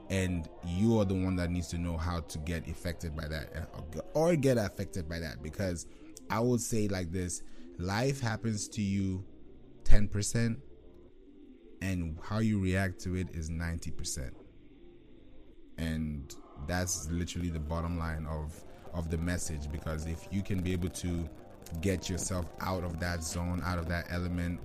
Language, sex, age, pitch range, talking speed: English, male, 20-39, 85-100 Hz, 160 wpm